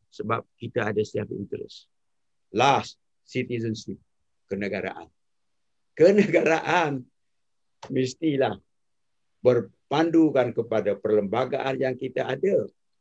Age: 50-69